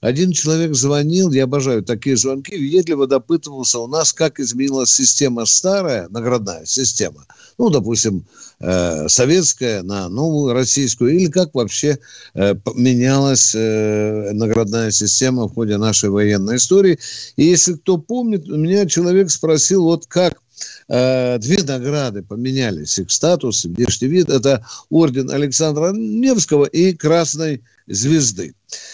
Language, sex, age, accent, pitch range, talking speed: Russian, male, 50-69, native, 120-170 Hz, 120 wpm